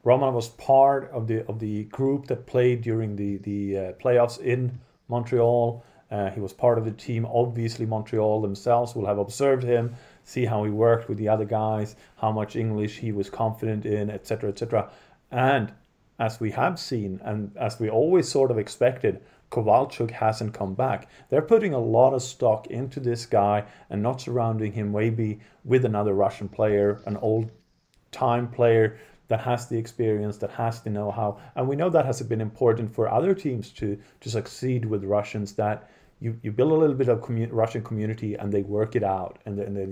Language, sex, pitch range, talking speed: English, male, 105-125 Hz, 190 wpm